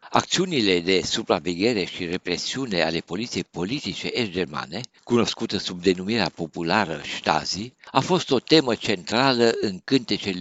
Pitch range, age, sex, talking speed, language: 90-120 Hz, 60-79, male, 120 wpm, Romanian